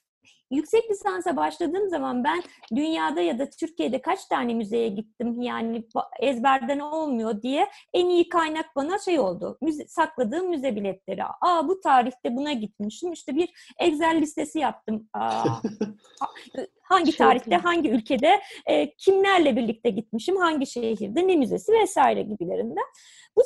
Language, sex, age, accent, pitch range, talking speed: Turkish, female, 30-49, native, 255-365 Hz, 135 wpm